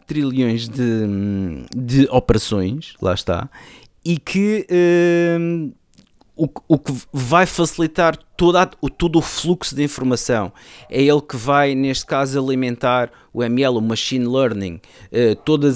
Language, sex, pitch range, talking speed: Portuguese, male, 115-145 Hz, 120 wpm